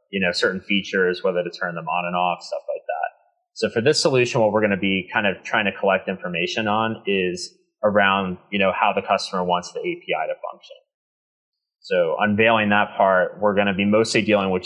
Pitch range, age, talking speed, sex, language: 95-150 Hz, 20-39, 215 wpm, male, English